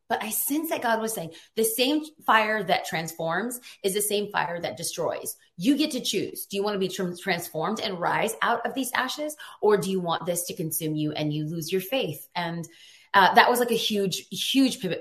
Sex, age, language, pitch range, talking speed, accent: female, 30-49, English, 165-225 Hz, 220 wpm, American